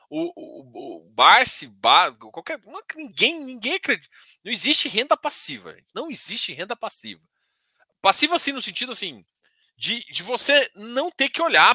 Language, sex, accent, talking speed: Portuguese, male, Brazilian, 155 wpm